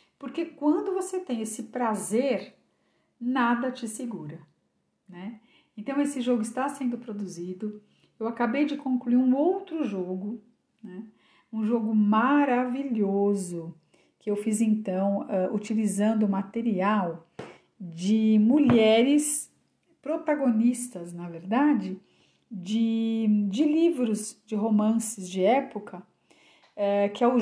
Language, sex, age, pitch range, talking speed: Portuguese, female, 50-69, 205-270 Hz, 105 wpm